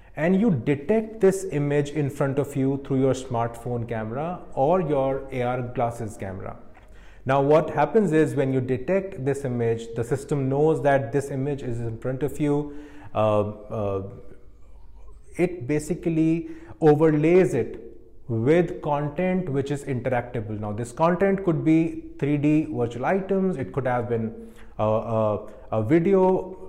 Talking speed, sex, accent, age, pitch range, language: 145 wpm, male, Indian, 30-49, 125-165 Hz, English